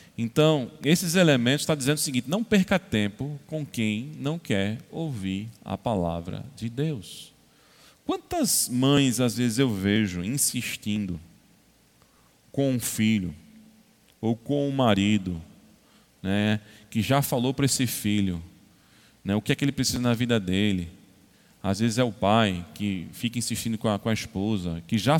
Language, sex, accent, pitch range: Portuguese, male, Brazilian, 105-140 Hz